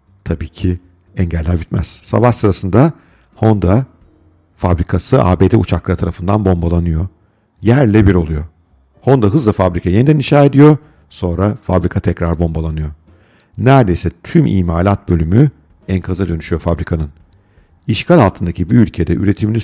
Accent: native